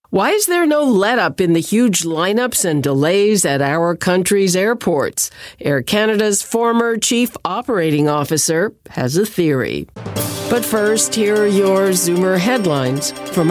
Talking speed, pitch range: 140 wpm, 150-210 Hz